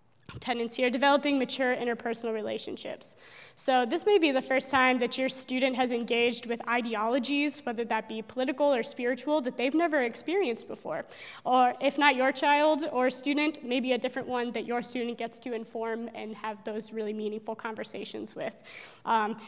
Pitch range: 230-270 Hz